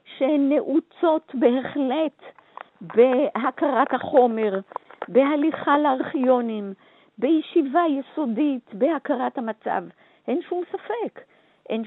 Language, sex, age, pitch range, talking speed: Hebrew, female, 50-69, 195-280 Hz, 70 wpm